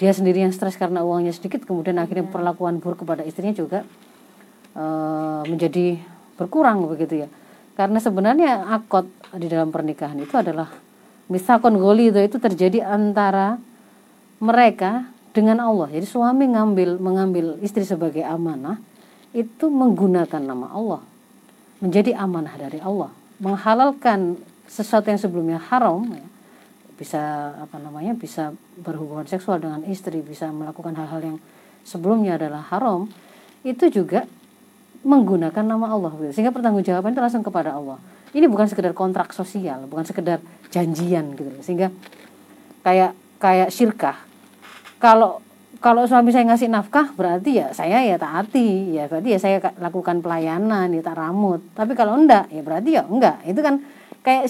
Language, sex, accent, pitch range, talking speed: Indonesian, female, native, 170-230 Hz, 135 wpm